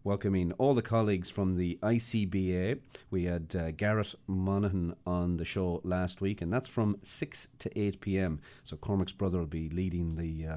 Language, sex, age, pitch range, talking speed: English, male, 40-59, 90-115 Hz, 180 wpm